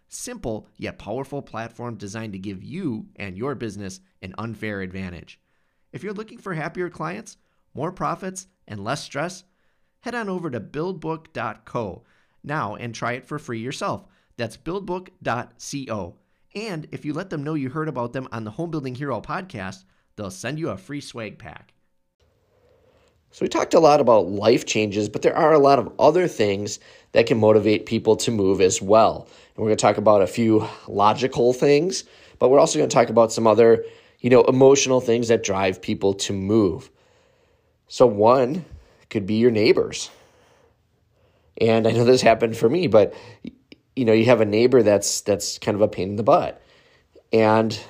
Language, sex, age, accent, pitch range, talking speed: English, male, 30-49, American, 105-155 Hz, 180 wpm